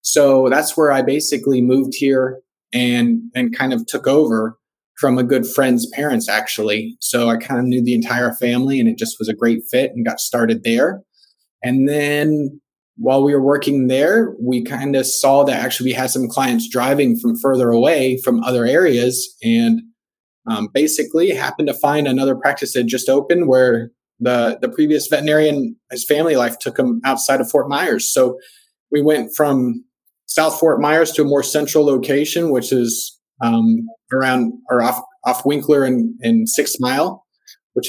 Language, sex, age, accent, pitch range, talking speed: English, male, 30-49, American, 125-160 Hz, 175 wpm